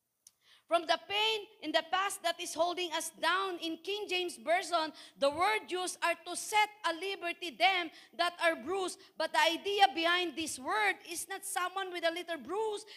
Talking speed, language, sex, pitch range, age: 185 wpm, Filipino, female, 315-375 Hz, 40-59